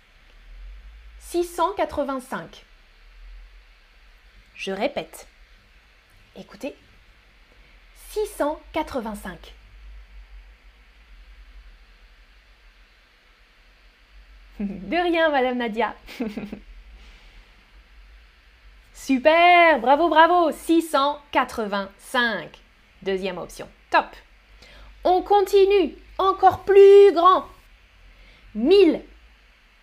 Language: French